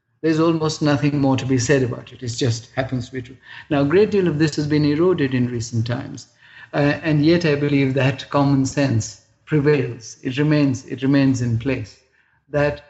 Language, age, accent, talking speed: English, 50-69, Indian, 195 wpm